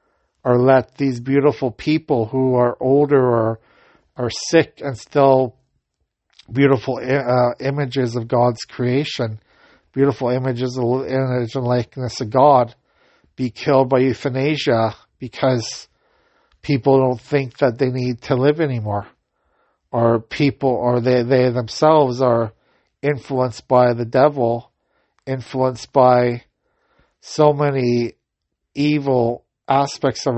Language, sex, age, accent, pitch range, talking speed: English, male, 50-69, American, 120-140 Hz, 115 wpm